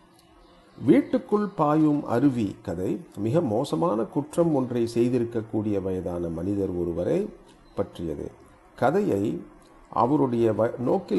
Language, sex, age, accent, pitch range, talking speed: Tamil, male, 40-59, native, 110-155 Hz, 85 wpm